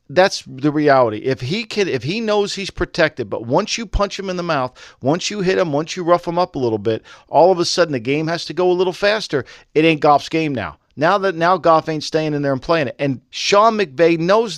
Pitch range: 145-185 Hz